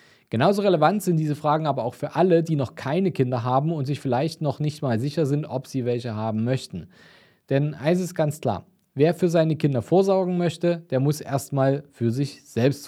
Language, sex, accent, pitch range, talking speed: German, male, German, 115-150 Hz, 205 wpm